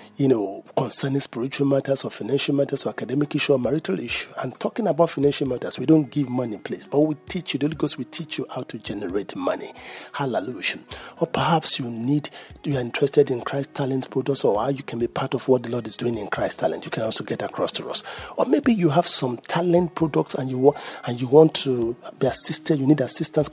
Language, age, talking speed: English, 40-59, 230 wpm